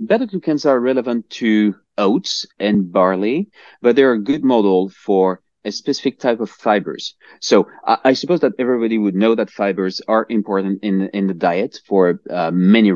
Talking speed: 170 wpm